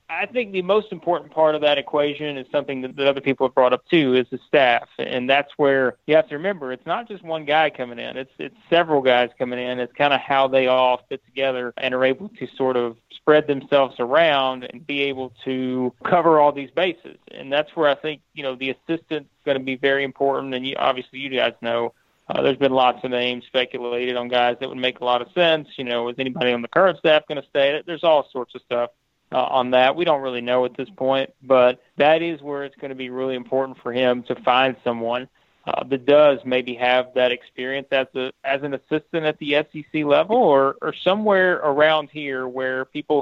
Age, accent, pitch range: 30-49, American, 125-150 Hz